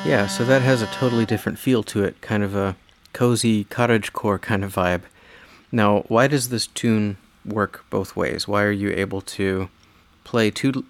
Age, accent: 30-49, American